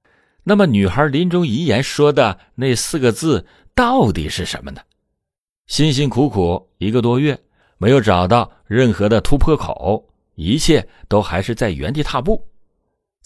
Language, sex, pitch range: Chinese, male, 90-125 Hz